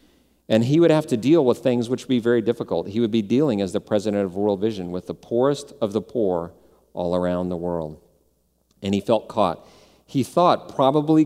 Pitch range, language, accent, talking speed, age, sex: 90-125 Hz, English, American, 215 wpm, 40-59, male